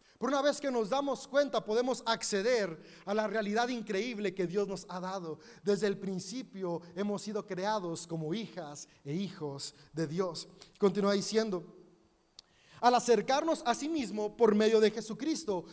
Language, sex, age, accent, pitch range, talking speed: Spanish, male, 30-49, Mexican, 200-270 Hz, 155 wpm